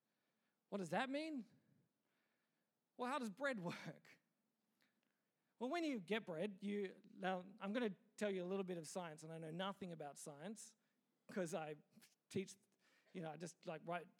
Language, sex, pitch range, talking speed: English, male, 195-245 Hz, 175 wpm